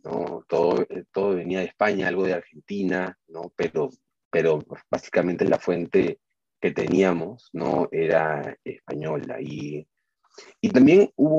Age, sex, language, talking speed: 30-49, male, Spanish, 125 wpm